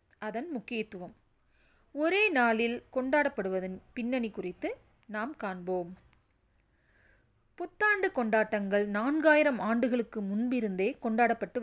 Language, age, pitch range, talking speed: Tamil, 30-49, 210-300 Hz, 75 wpm